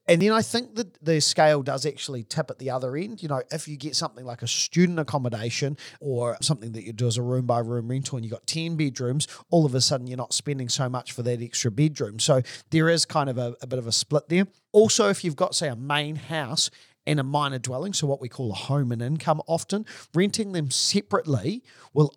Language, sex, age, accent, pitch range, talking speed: English, male, 40-59, Australian, 130-160 Hz, 240 wpm